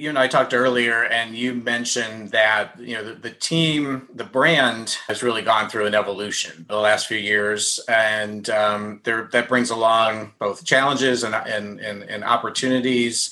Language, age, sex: English, 30-49, male